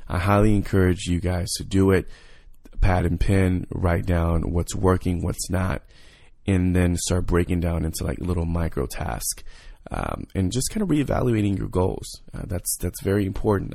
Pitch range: 90-100 Hz